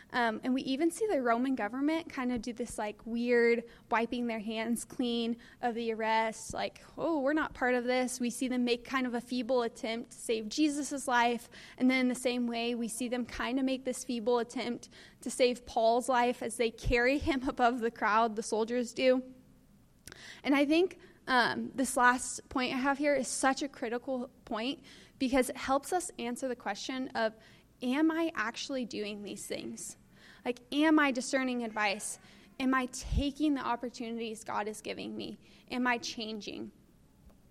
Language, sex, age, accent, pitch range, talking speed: English, female, 20-39, American, 235-275 Hz, 185 wpm